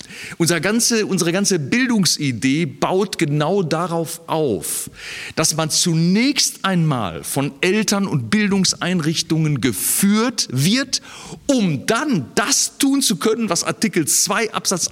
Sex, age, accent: male, 40-59, German